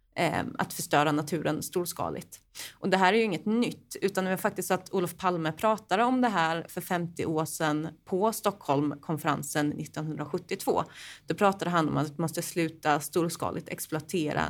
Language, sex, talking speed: Swedish, female, 165 wpm